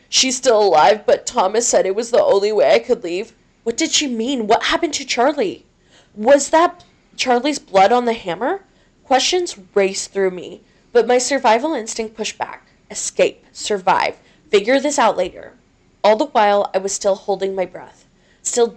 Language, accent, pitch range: English, American, 190-250 Hz